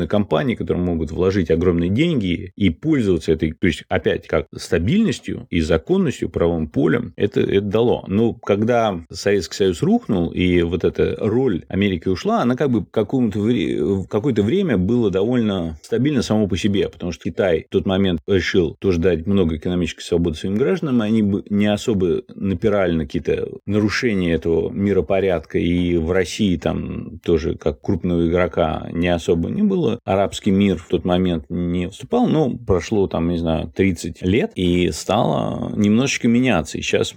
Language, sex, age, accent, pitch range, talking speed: Russian, male, 30-49, native, 85-100 Hz, 165 wpm